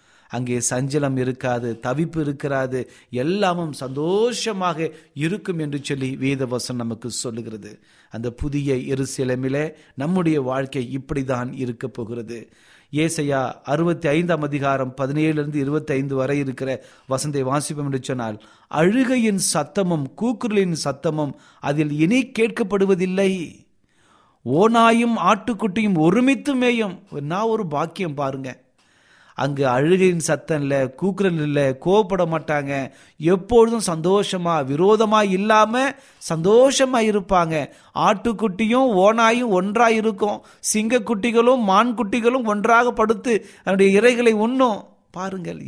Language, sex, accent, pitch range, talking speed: Tamil, male, native, 140-215 Hz, 100 wpm